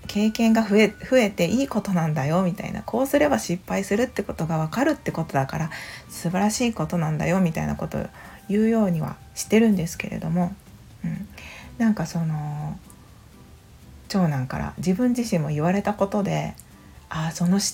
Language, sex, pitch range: Japanese, female, 160-225 Hz